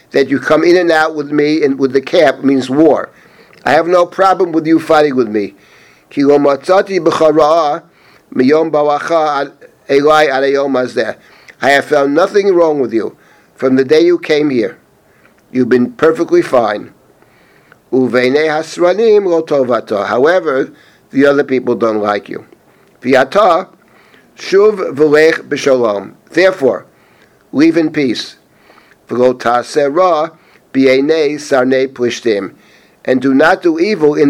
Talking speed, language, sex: 100 wpm, English, male